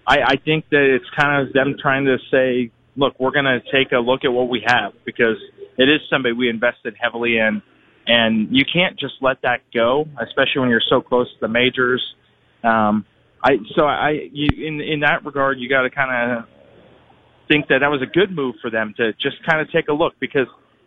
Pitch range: 120-140 Hz